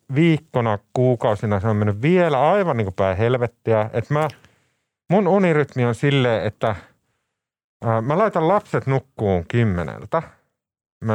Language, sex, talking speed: Finnish, male, 125 wpm